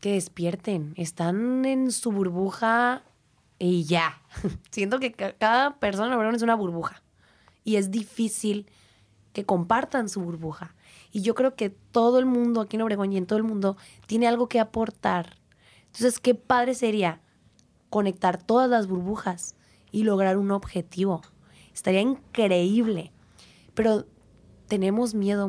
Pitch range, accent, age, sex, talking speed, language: 180-235 Hz, Mexican, 20-39, female, 140 wpm, Spanish